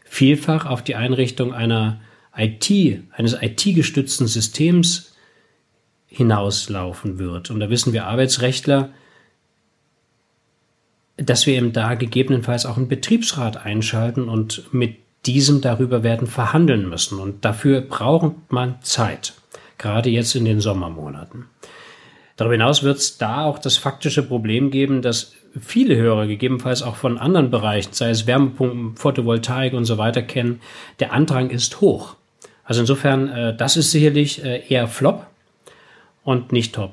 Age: 40-59